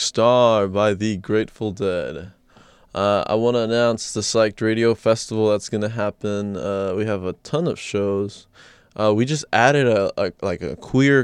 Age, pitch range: 20-39, 100-115 Hz